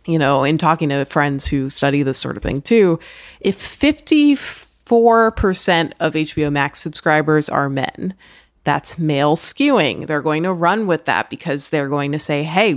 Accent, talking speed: American, 170 wpm